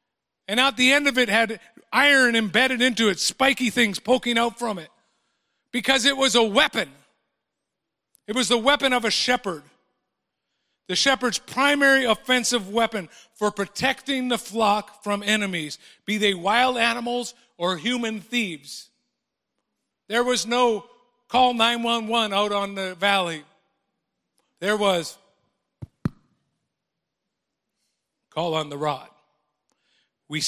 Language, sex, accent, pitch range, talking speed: English, male, American, 175-235 Hz, 125 wpm